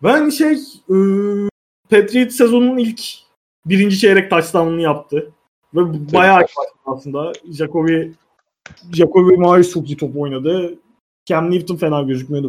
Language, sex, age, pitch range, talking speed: Turkish, male, 30-49, 145-190 Hz, 105 wpm